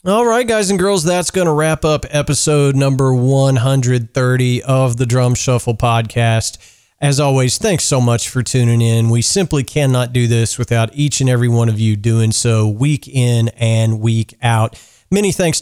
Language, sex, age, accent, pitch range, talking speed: English, male, 40-59, American, 115-145 Hz, 180 wpm